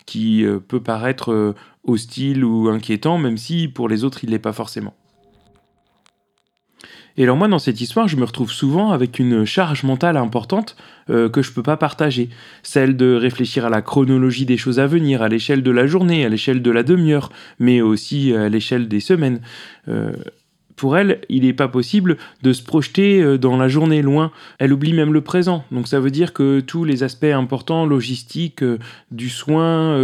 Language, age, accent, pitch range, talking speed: French, 30-49, French, 120-155 Hz, 190 wpm